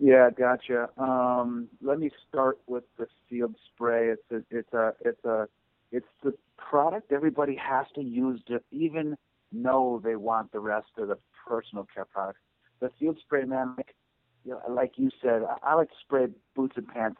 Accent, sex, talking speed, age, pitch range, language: American, male, 180 wpm, 50-69, 105-125 Hz, English